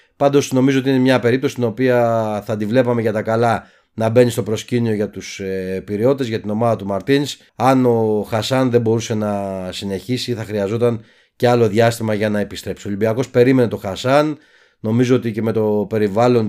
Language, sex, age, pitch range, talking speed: Greek, male, 30-49, 105-125 Hz, 190 wpm